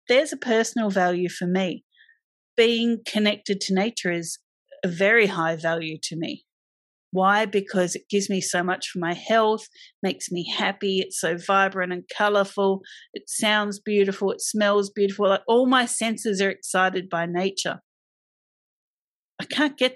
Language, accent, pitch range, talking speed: English, Australian, 180-230 Hz, 155 wpm